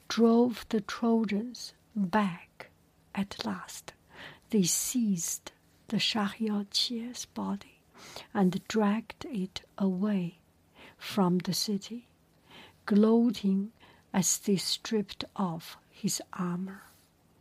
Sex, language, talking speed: female, English, 85 wpm